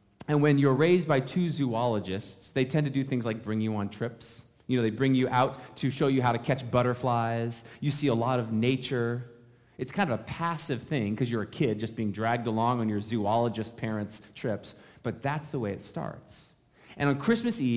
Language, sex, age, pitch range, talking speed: English, male, 30-49, 105-135 Hz, 220 wpm